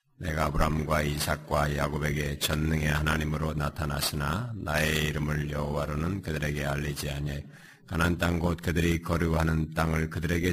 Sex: male